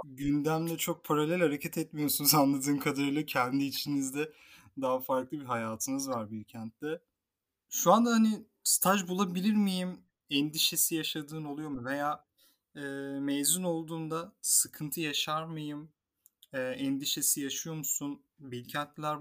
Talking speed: 115 wpm